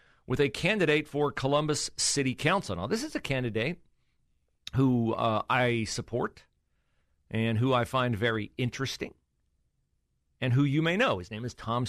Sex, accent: male, American